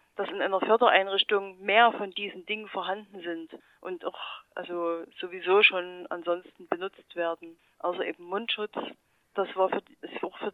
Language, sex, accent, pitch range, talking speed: German, female, German, 185-225 Hz, 160 wpm